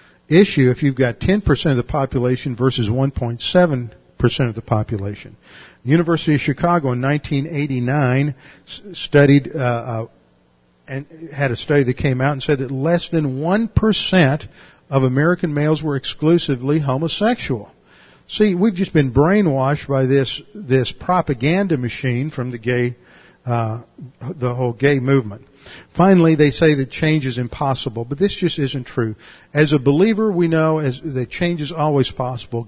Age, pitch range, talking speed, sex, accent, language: 50-69, 125-160 Hz, 155 wpm, male, American, English